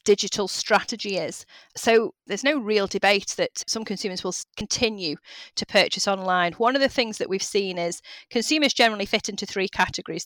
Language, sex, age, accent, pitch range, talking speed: English, female, 30-49, British, 180-210 Hz, 175 wpm